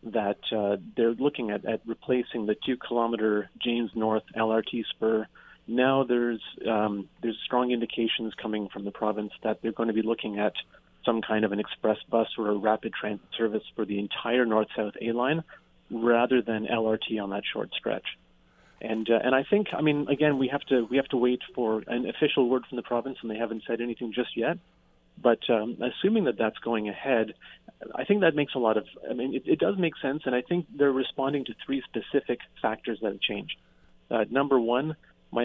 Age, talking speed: 30-49, 205 wpm